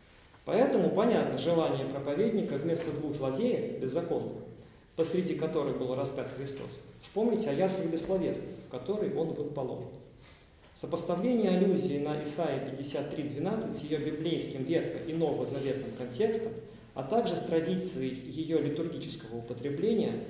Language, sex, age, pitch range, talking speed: Russian, male, 40-59, 145-180 Hz, 120 wpm